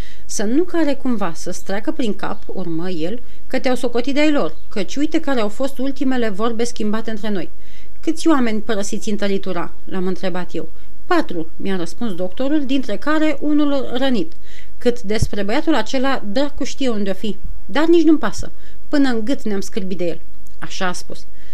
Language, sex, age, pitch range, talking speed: Romanian, female, 30-49, 190-275 Hz, 175 wpm